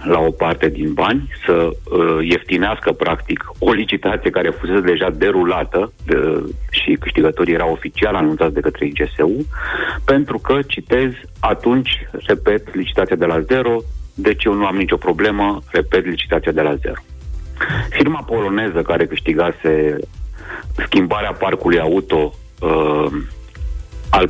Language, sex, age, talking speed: Romanian, male, 30-49, 125 wpm